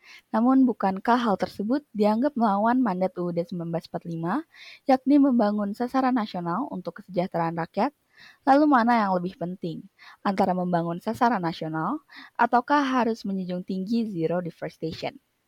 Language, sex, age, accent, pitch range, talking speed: Indonesian, female, 20-39, native, 175-235 Hz, 120 wpm